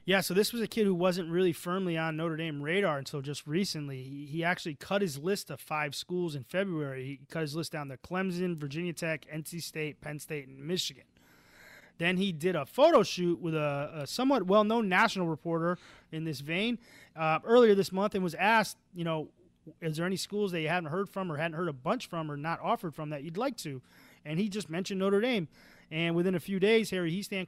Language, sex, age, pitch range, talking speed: English, male, 30-49, 155-200 Hz, 225 wpm